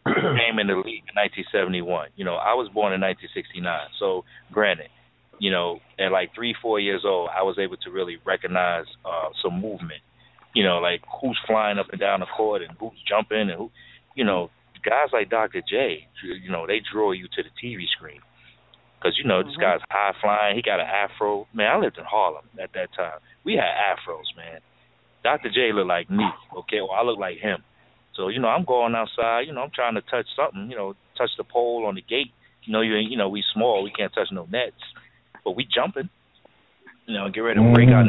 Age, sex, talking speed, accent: 30-49, male, 220 wpm, American